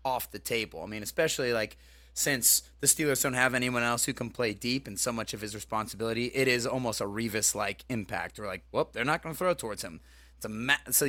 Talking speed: 220 wpm